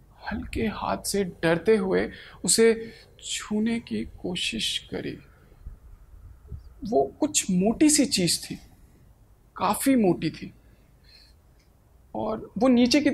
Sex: male